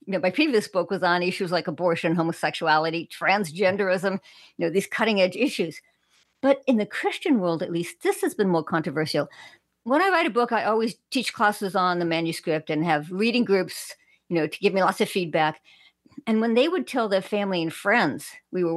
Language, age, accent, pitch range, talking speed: English, 50-69, American, 165-230 Hz, 210 wpm